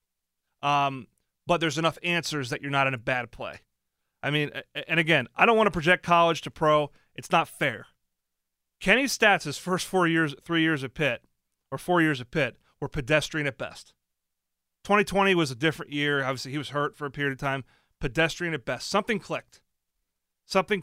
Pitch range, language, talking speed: 120-160 Hz, English, 190 wpm